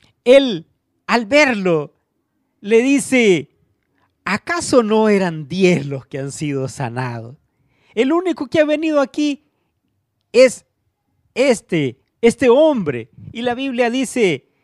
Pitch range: 135-215 Hz